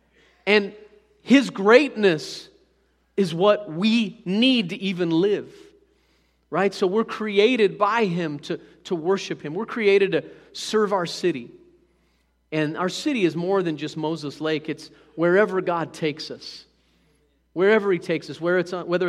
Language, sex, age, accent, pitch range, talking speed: English, male, 40-59, American, 160-205 Hz, 140 wpm